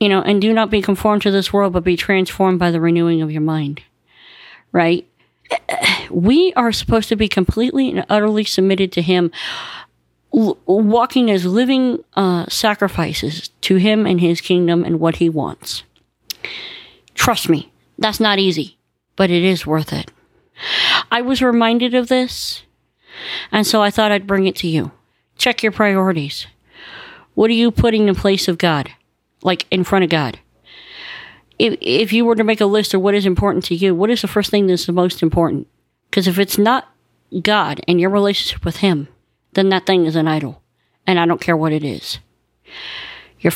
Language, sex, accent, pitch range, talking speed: English, female, American, 170-215 Hz, 180 wpm